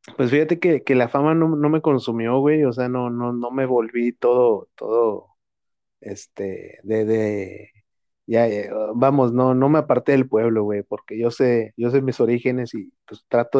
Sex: male